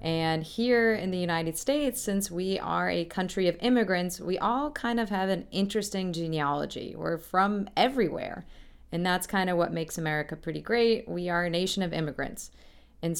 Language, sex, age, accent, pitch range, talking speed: English, female, 30-49, American, 160-190 Hz, 180 wpm